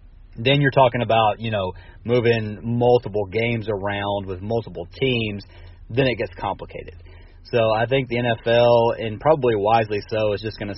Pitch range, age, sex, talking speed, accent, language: 95-115 Hz, 30-49, male, 165 wpm, American, English